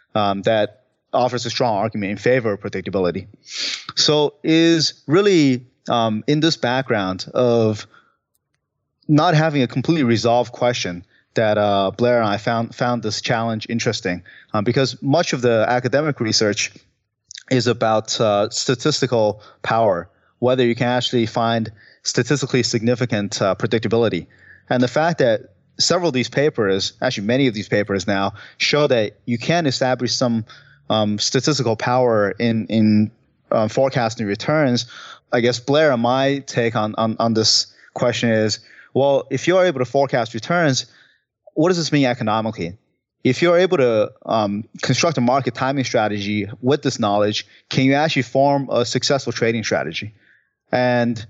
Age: 30-49